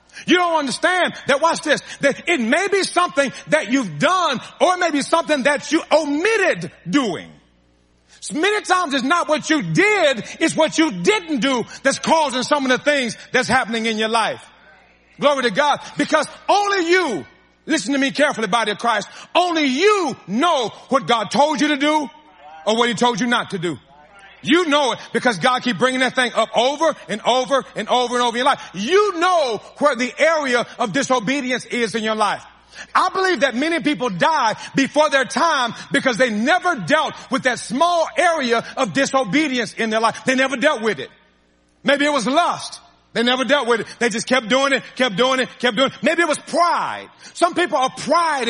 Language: English